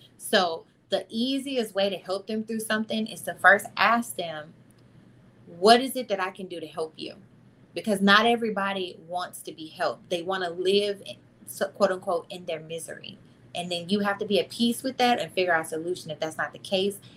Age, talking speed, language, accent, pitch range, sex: 20-39, 210 wpm, English, American, 170-215 Hz, female